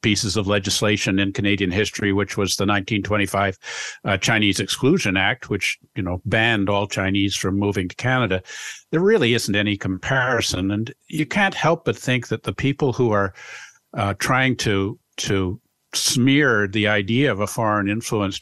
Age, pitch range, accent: 50-69, 100-120 Hz, American